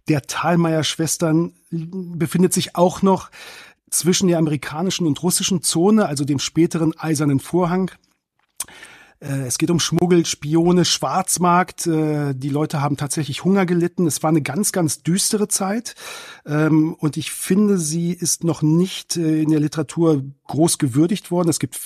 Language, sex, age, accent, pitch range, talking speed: German, male, 40-59, German, 145-170 Hz, 140 wpm